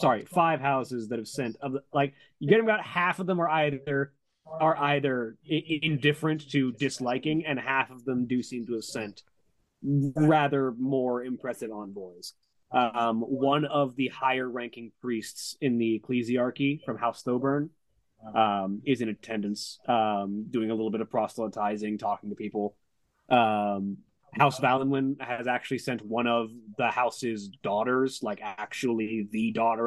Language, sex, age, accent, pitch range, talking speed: English, male, 20-39, American, 110-140 Hz, 155 wpm